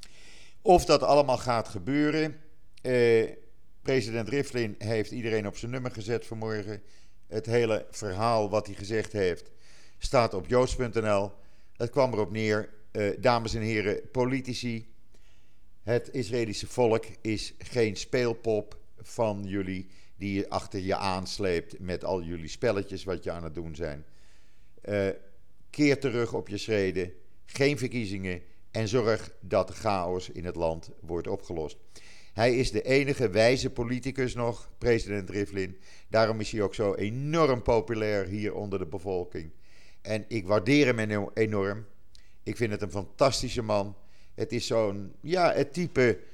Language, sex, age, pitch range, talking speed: Dutch, male, 50-69, 100-120 Hz, 140 wpm